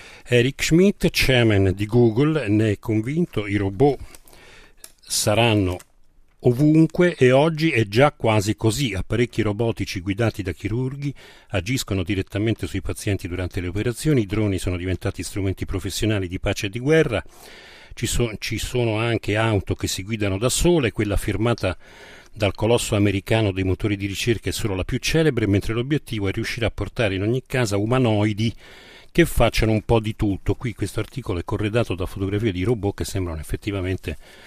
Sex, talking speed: male, 160 wpm